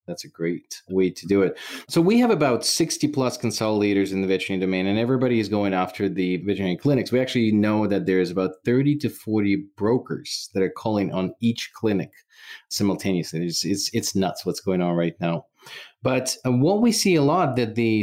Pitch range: 100-130 Hz